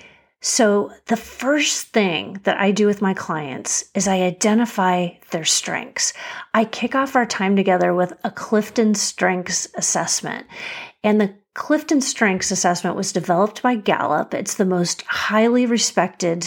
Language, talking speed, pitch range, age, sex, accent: English, 145 wpm, 185-235 Hz, 30-49, female, American